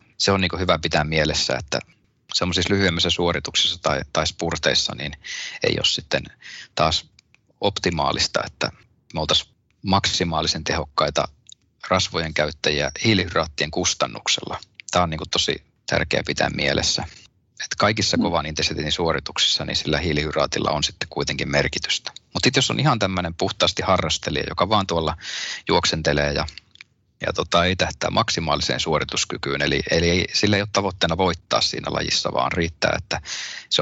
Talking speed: 140 wpm